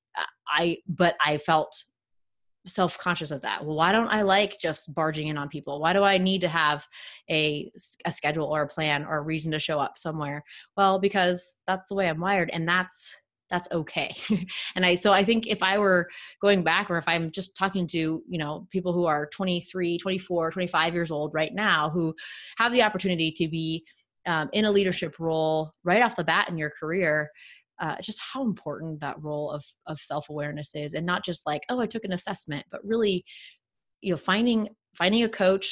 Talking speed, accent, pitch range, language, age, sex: 205 wpm, American, 155-195 Hz, English, 20-39, female